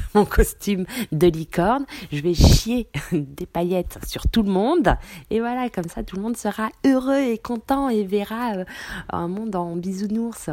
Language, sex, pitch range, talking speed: French, female, 130-205 Hz, 170 wpm